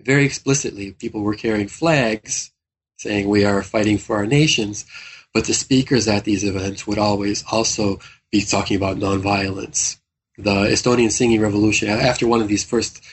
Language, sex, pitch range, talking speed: English, male, 105-130 Hz, 160 wpm